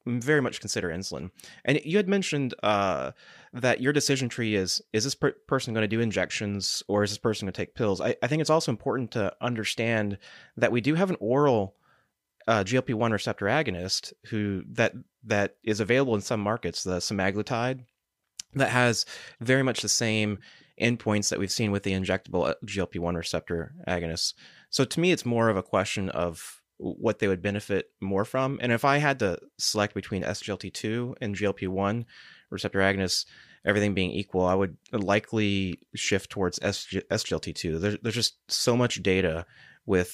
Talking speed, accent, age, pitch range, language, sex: 175 wpm, American, 30-49, 90-120 Hz, English, male